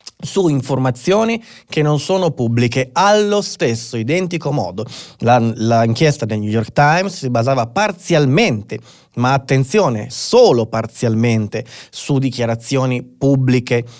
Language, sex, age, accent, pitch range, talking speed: Italian, male, 30-49, native, 120-145 Hz, 105 wpm